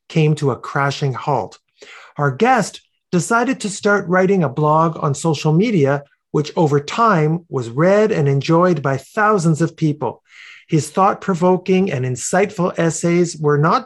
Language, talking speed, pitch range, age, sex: English, 145 wpm, 145-195 Hz, 50-69, male